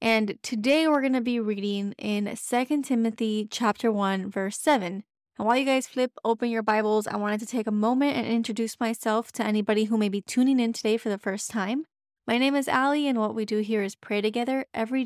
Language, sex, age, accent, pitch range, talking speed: English, female, 20-39, American, 210-245 Hz, 225 wpm